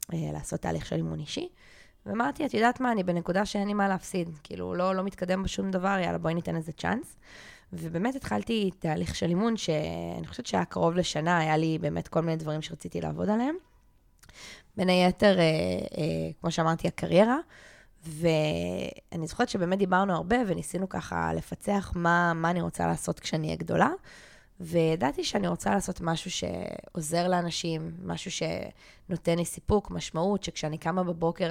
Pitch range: 155-190 Hz